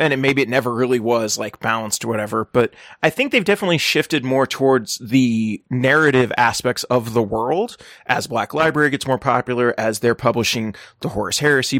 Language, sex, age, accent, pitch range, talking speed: English, male, 30-49, American, 120-150 Hz, 190 wpm